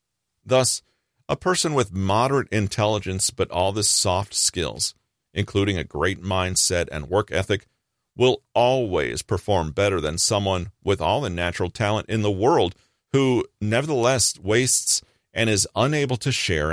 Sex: male